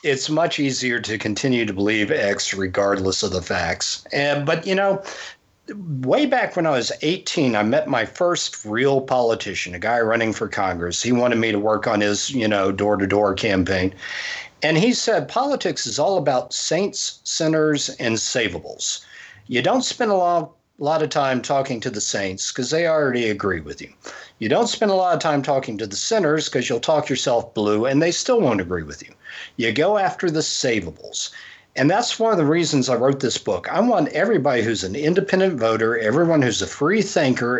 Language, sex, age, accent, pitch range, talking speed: English, male, 50-69, American, 110-165 Hz, 200 wpm